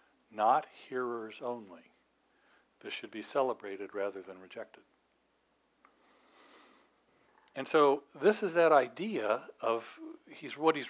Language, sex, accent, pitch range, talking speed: English, male, American, 110-145 Hz, 110 wpm